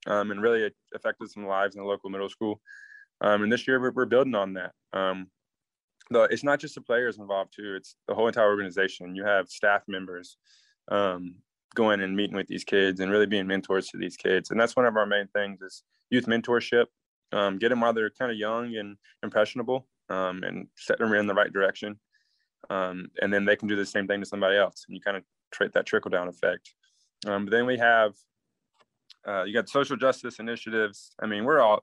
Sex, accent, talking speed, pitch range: male, American, 215 wpm, 95-115 Hz